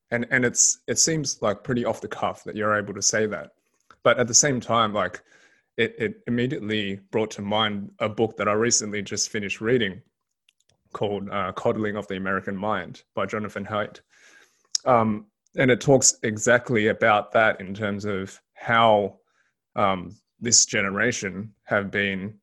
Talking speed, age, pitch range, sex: 165 wpm, 20-39, 100-115 Hz, male